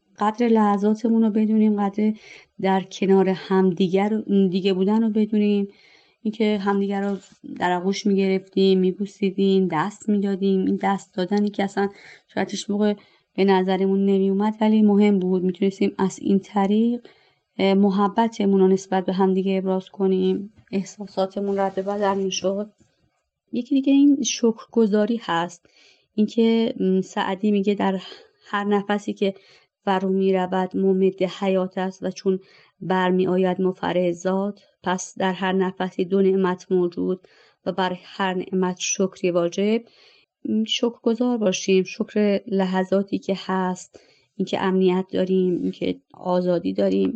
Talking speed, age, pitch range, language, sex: 125 wpm, 30-49, 185-210 Hz, Persian, female